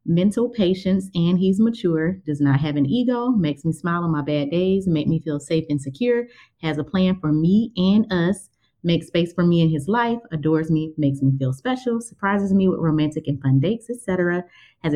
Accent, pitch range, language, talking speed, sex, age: American, 165-210 Hz, English, 210 wpm, female, 30-49